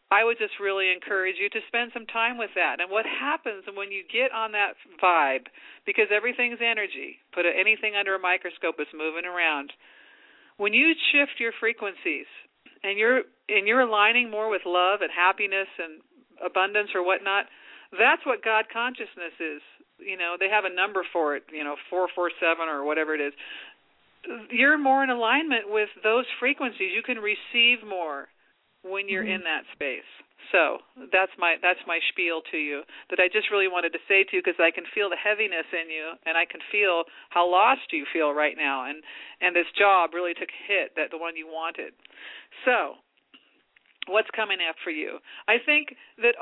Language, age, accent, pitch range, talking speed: English, 50-69, American, 175-240 Hz, 190 wpm